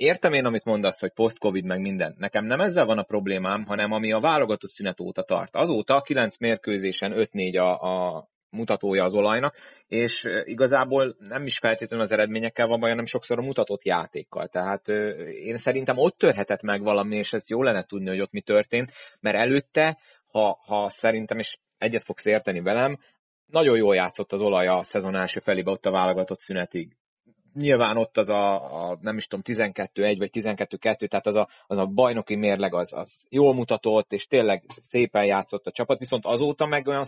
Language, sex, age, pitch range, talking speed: Hungarian, male, 30-49, 95-115 Hz, 190 wpm